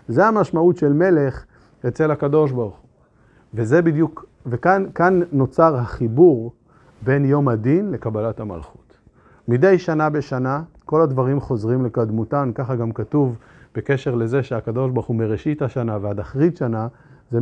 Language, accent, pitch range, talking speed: Hebrew, native, 120-165 Hz, 135 wpm